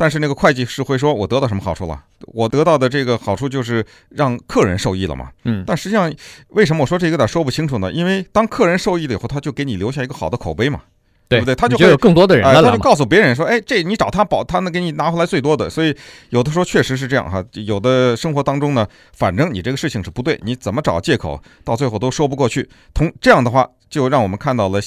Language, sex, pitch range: Chinese, male, 105-155 Hz